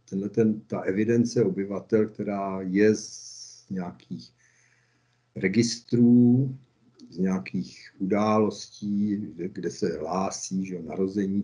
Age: 50-69